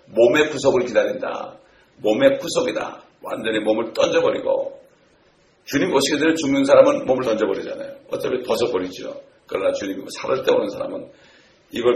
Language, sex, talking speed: English, male, 120 wpm